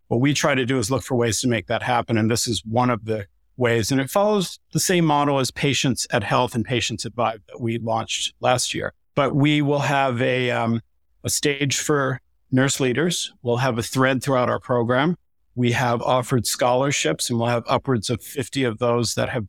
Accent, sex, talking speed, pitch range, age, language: American, male, 220 wpm, 120-140 Hz, 50-69, English